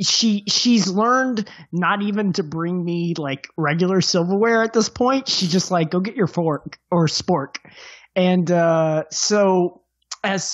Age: 20-39